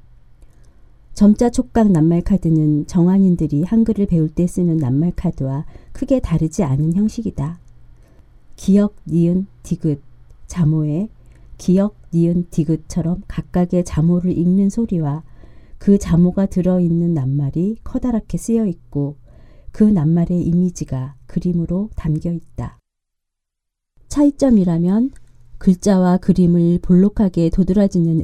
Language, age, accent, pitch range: Korean, 40-59, native, 150-195 Hz